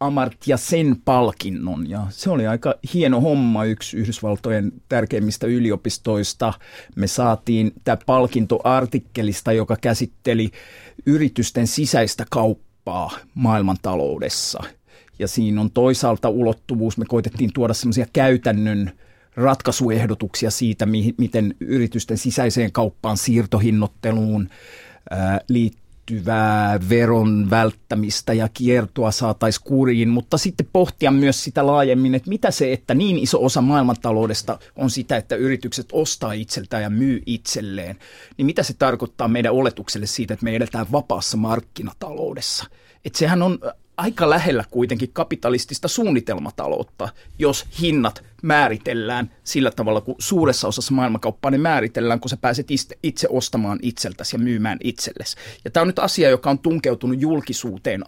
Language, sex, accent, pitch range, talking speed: Finnish, male, native, 110-130 Hz, 125 wpm